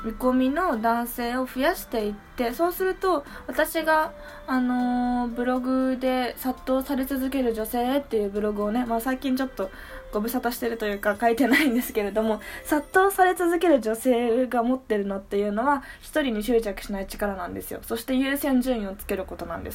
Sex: female